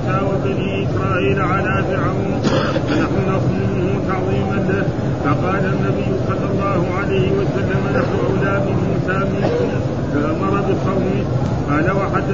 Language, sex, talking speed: Arabic, male, 85 wpm